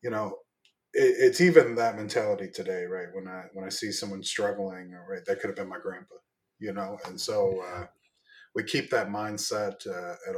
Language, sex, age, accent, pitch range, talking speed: English, male, 20-39, American, 100-165 Hz, 190 wpm